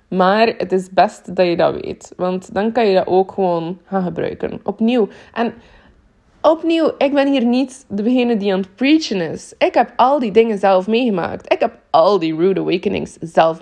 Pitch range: 195-250 Hz